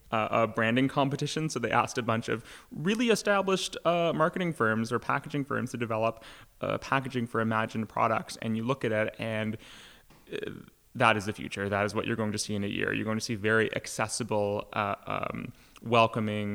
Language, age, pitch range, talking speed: English, 20-39, 110-155 Hz, 195 wpm